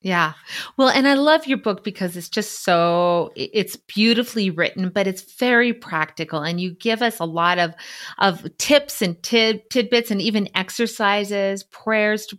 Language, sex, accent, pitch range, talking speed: English, female, American, 175-225 Hz, 170 wpm